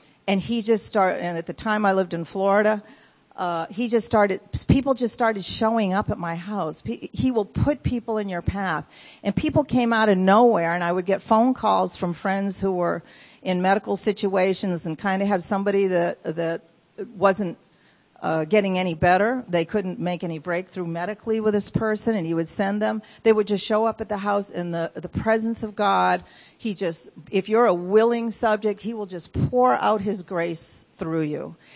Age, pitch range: 50-69, 170-205 Hz